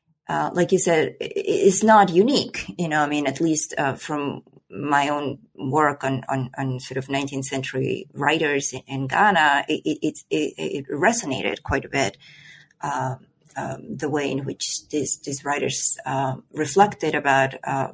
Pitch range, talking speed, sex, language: 135-160 Hz, 170 wpm, female, English